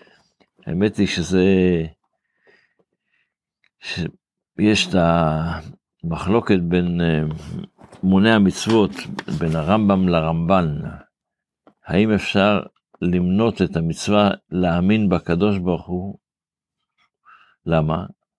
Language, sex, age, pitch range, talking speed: Hebrew, male, 50-69, 85-100 Hz, 75 wpm